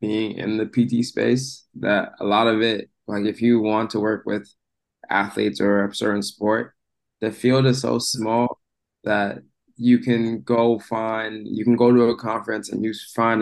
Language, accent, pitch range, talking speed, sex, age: English, American, 105-120 Hz, 185 wpm, male, 20-39